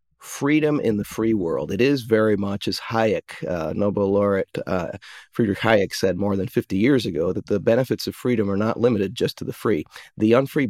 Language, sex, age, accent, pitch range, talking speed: English, male, 40-59, American, 100-120 Hz, 210 wpm